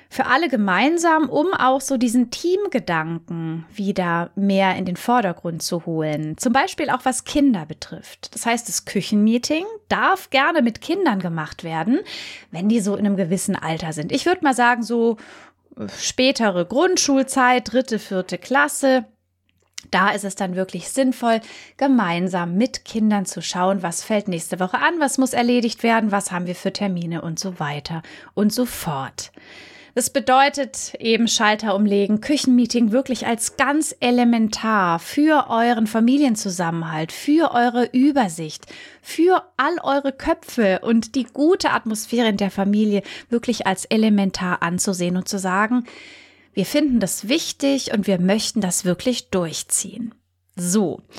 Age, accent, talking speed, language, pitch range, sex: 30-49, German, 145 wpm, German, 195-275 Hz, female